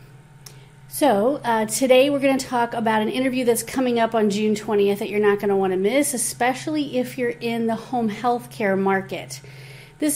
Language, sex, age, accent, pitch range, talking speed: English, female, 30-49, American, 185-240 Hz, 200 wpm